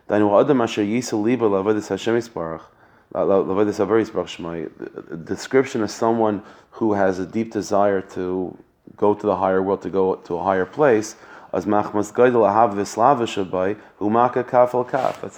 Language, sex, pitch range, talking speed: English, male, 95-110 Hz, 85 wpm